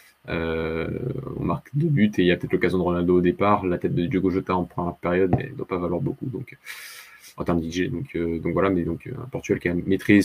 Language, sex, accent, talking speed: French, male, French, 260 wpm